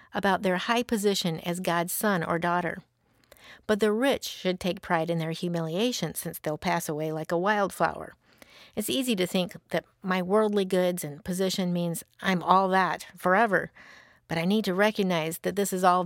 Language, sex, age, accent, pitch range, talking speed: English, female, 50-69, American, 170-215 Hz, 185 wpm